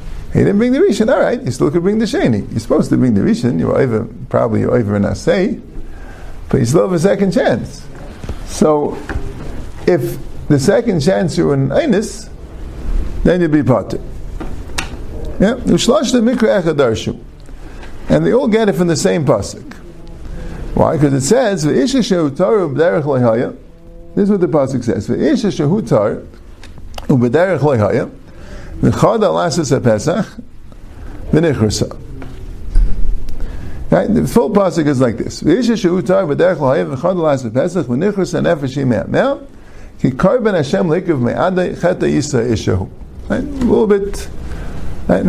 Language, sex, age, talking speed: English, male, 50-69, 140 wpm